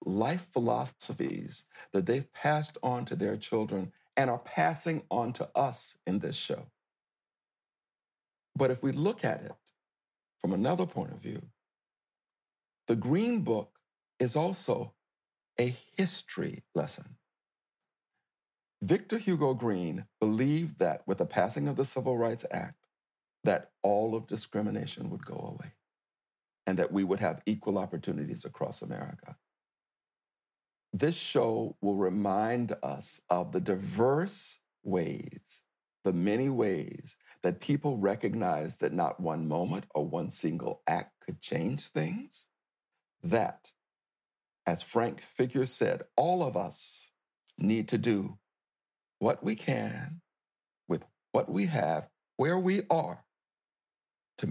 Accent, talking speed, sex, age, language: American, 125 wpm, male, 60-79, English